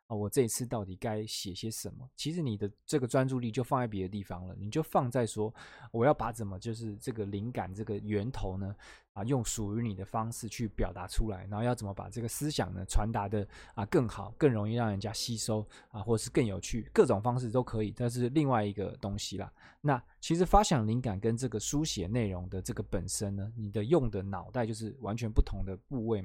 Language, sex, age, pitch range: Chinese, male, 20-39, 100-130 Hz